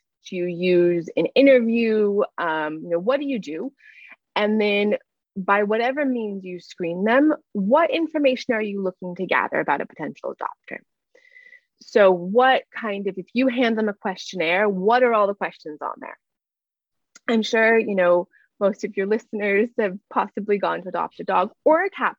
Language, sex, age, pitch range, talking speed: English, female, 20-39, 190-270 Hz, 180 wpm